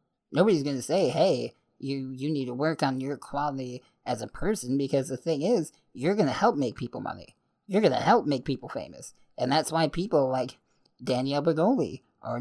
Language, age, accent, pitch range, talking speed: English, 20-39, American, 130-155 Hz, 205 wpm